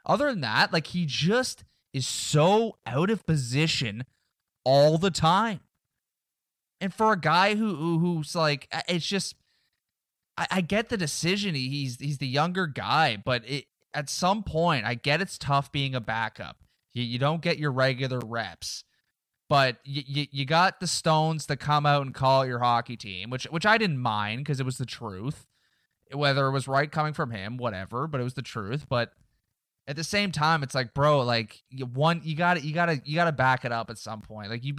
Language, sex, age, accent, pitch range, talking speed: English, male, 20-39, American, 125-170 Hz, 200 wpm